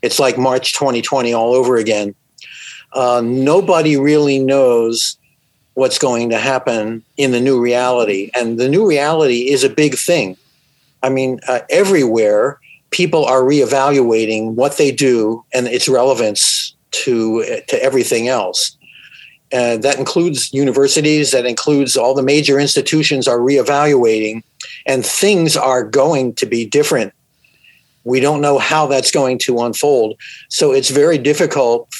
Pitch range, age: 125-150 Hz, 50-69